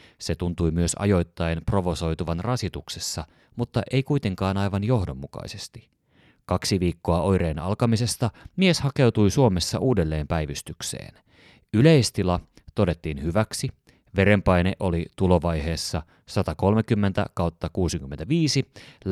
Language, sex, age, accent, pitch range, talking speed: Finnish, male, 30-49, native, 85-110 Hz, 85 wpm